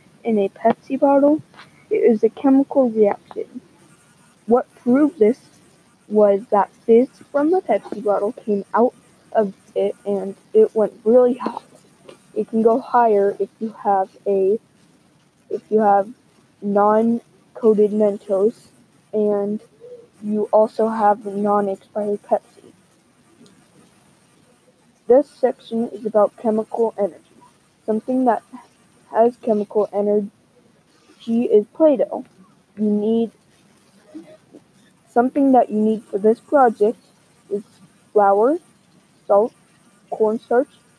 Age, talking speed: 20-39, 105 wpm